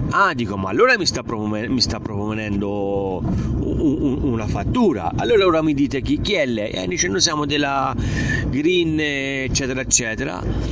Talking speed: 175 wpm